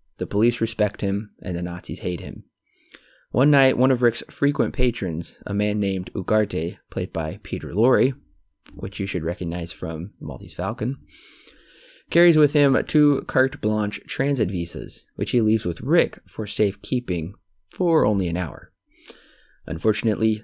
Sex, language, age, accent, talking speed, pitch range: male, English, 20-39, American, 150 wpm, 95-125 Hz